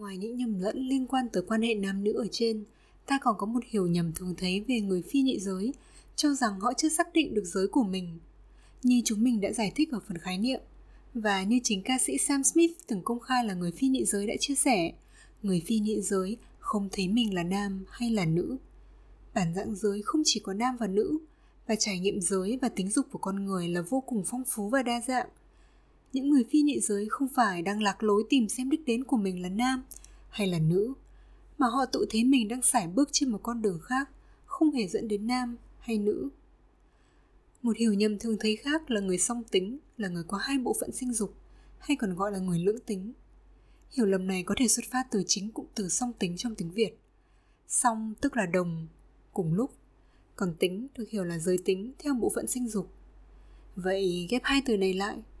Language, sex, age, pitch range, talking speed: Vietnamese, female, 20-39, 195-255 Hz, 225 wpm